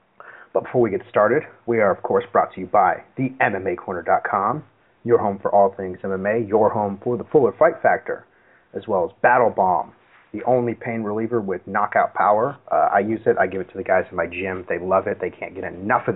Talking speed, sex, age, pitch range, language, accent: 225 wpm, male, 30-49, 100-120 Hz, English, American